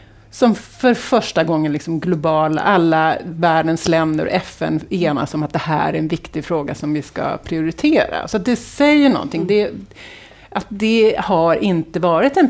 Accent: native